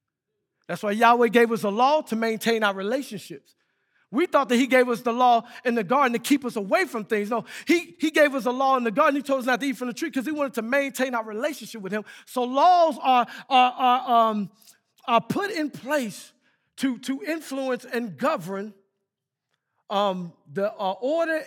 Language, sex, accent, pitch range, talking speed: English, male, American, 200-270 Hz, 200 wpm